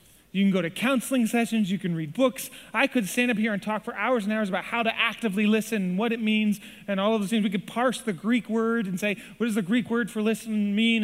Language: English